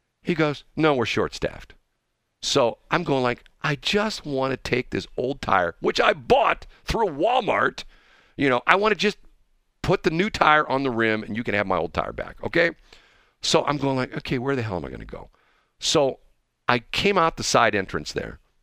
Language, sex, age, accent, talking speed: English, male, 50-69, American, 210 wpm